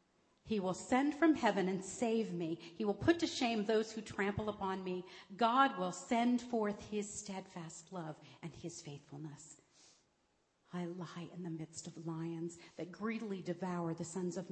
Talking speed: 170 wpm